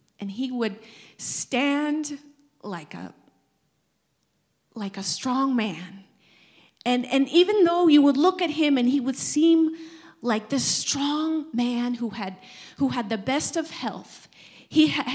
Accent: American